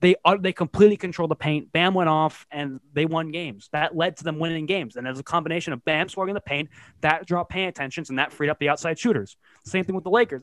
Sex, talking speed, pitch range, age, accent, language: male, 260 wpm, 150-190 Hz, 20-39, American, English